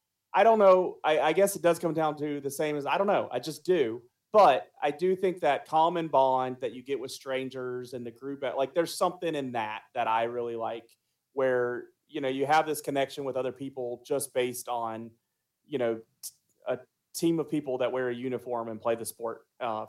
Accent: American